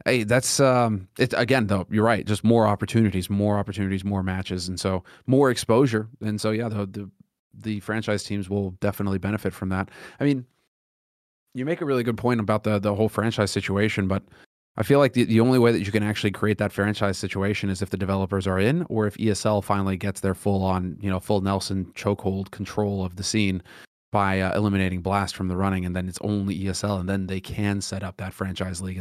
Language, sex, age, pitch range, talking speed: English, male, 30-49, 95-110 Hz, 225 wpm